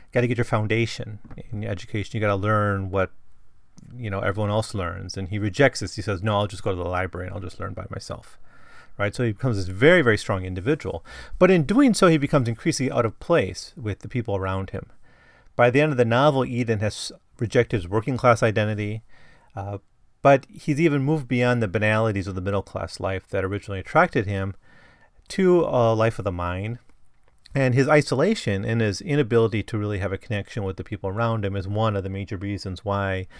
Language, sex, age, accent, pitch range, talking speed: English, male, 30-49, American, 100-130 Hz, 210 wpm